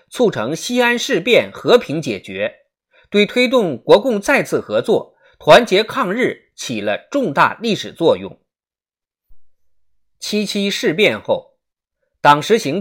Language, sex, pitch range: Chinese, male, 190-275 Hz